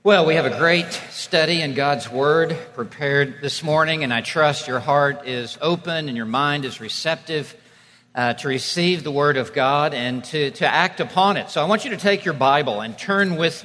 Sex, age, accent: male, 50-69, American